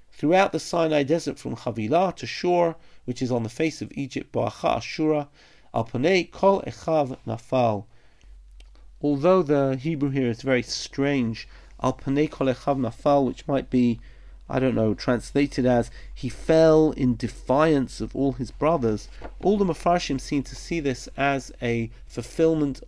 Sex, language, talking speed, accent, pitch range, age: male, English, 150 wpm, British, 115-145 Hz, 40-59